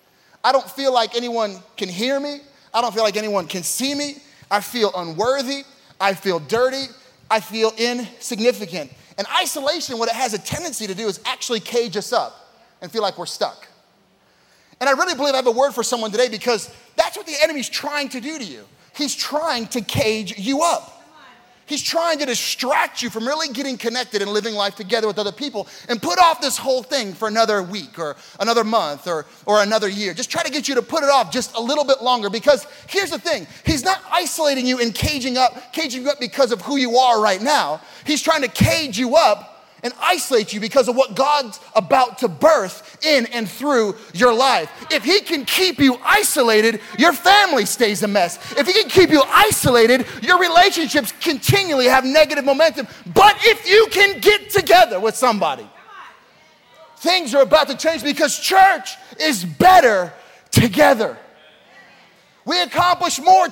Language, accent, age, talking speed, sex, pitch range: English, American, 30-49, 190 wpm, male, 230-310 Hz